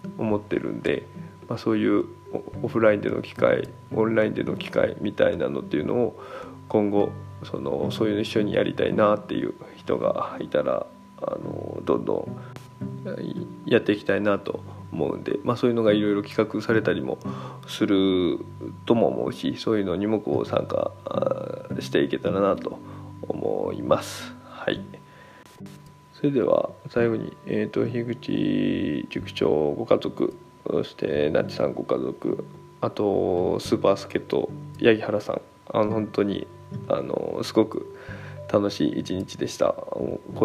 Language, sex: Japanese, male